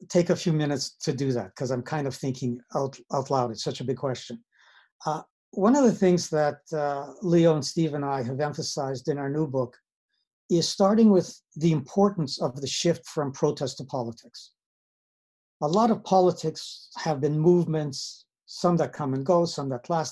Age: 60-79